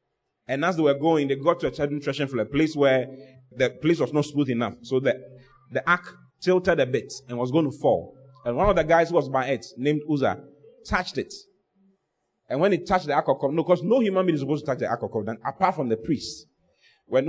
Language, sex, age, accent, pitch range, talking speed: English, male, 30-49, Nigerian, 135-185 Hz, 235 wpm